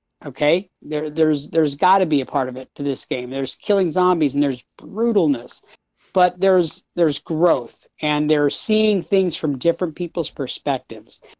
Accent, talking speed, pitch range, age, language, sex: American, 170 wpm, 155-195 Hz, 50-69, English, male